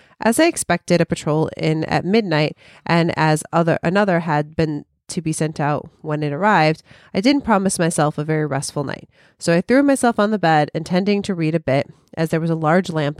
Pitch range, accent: 155-205 Hz, American